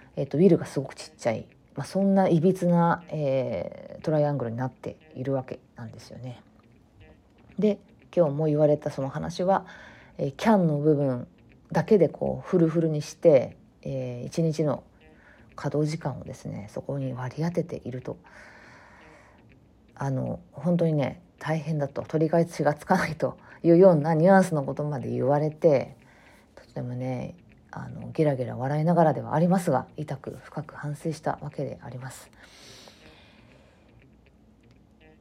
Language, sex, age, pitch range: Japanese, female, 40-59, 130-170 Hz